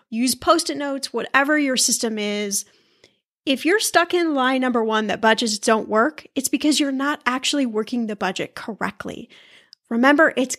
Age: 10-29